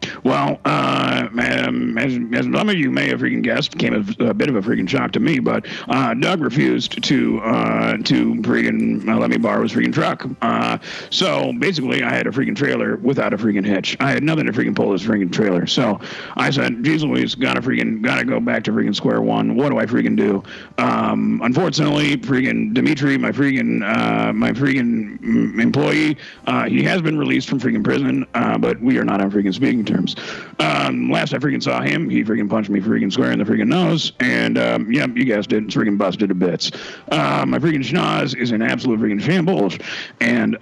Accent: American